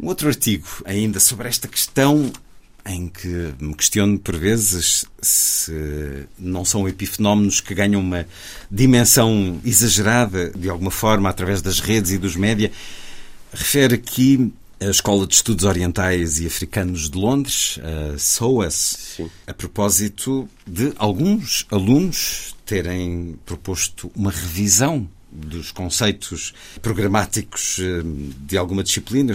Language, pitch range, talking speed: Portuguese, 90-110 Hz, 125 wpm